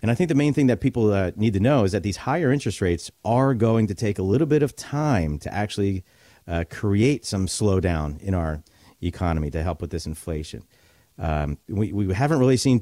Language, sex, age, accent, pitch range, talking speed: English, male, 50-69, American, 90-115 Hz, 220 wpm